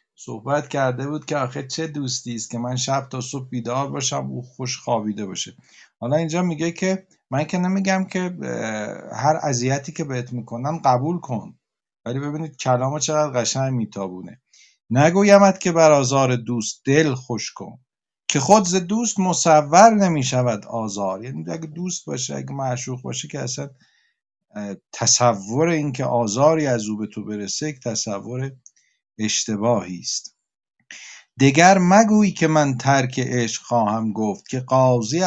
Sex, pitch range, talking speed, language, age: male, 115-150 Hz, 145 wpm, Persian, 50-69